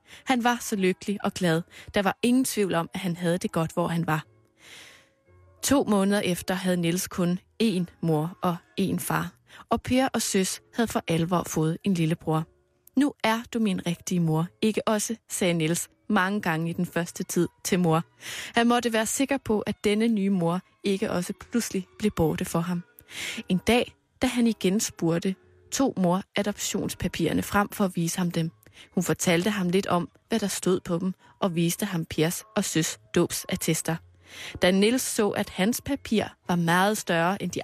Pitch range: 165-215 Hz